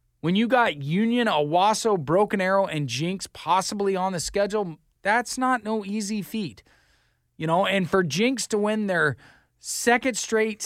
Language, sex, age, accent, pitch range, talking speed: English, male, 20-39, American, 150-205 Hz, 160 wpm